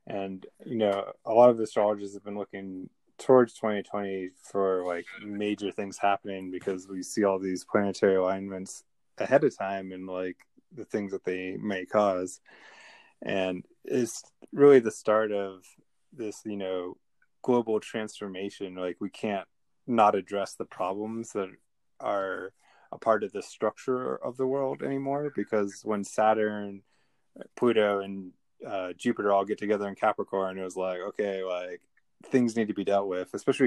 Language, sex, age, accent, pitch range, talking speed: English, male, 20-39, American, 95-110 Hz, 155 wpm